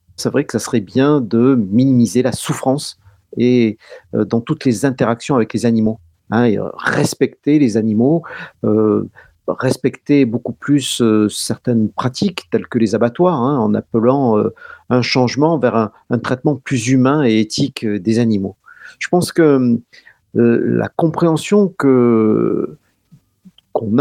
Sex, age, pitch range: male, 50-69, 115-150 Hz